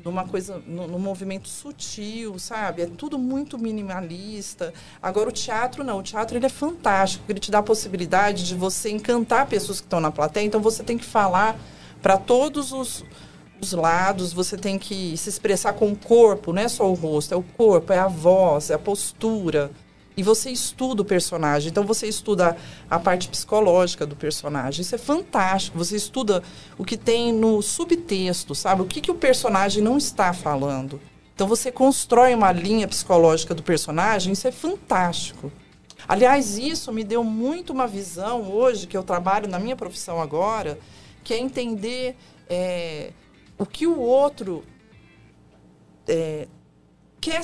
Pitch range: 180-235 Hz